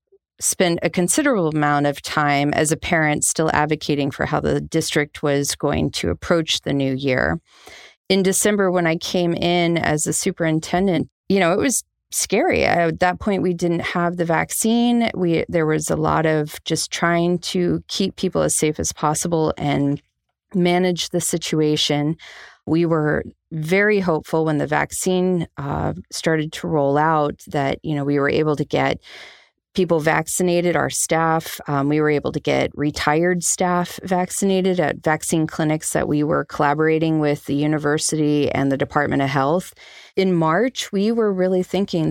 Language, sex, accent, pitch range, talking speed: English, female, American, 150-175 Hz, 165 wpm